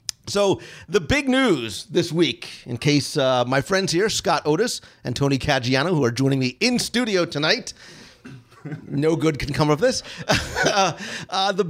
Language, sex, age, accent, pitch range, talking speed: English, male, 40-59, American, 140-195 Hz, 170 wpm